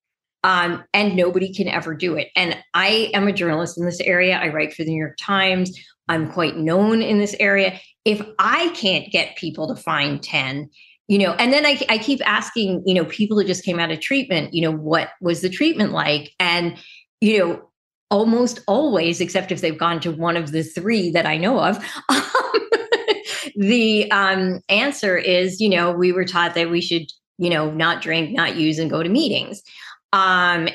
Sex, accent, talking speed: female, American, 200 wpm